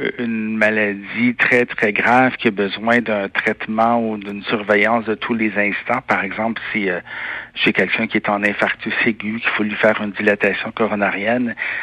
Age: 60-79